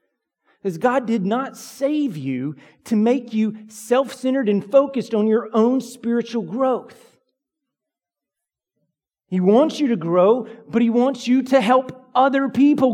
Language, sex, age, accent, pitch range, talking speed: English, male, 40-59, American, 205-245 Hz, 140 wpm